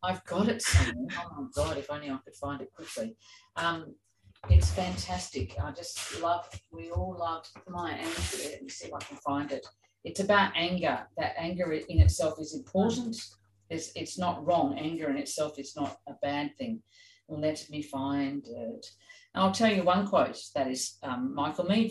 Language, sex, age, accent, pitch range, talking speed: English, female, 50-69, Australian, 140-190 Hz, 185 wpm